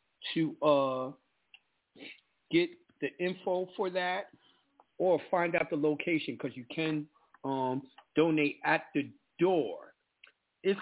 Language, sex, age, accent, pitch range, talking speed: English, male, 50-69, American, 135-175 Hz, 115 wpm